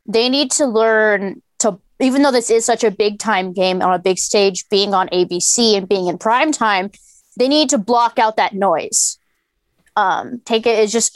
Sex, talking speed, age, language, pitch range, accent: female, 200 wpm, 20-39, English, 215-265 Hz, American